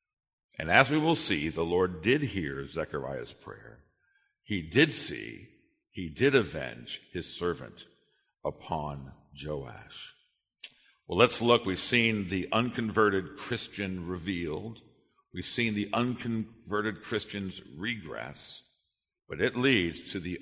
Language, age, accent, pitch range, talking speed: English, 60-79, American, 90-120 Hz, 120 wpm